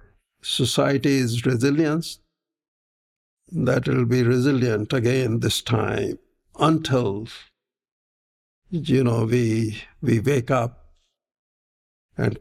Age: 60-79